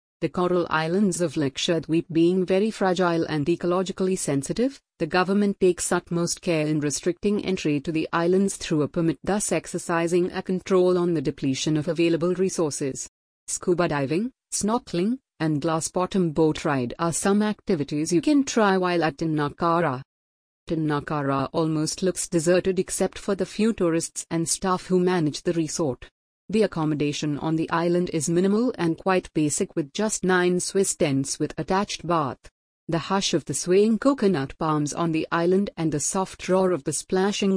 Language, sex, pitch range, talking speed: English, female, 160-190 Hz, 160 wpm